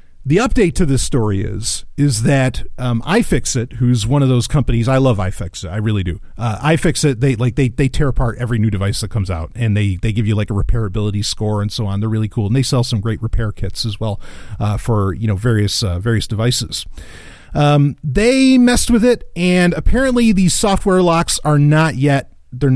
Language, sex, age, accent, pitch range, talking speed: English, male, 40-59, American, 105-155 Hz, 215 wpm